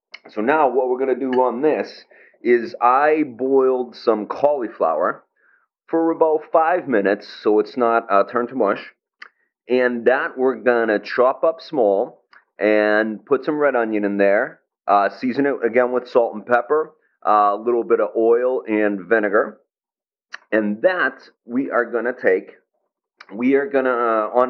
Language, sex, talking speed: English, male, 165 wpm